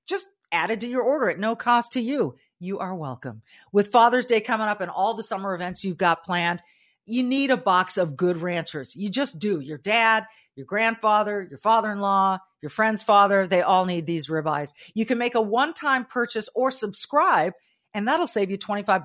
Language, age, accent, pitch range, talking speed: English, 40-59, American, 175-230 Hz, 210 wpm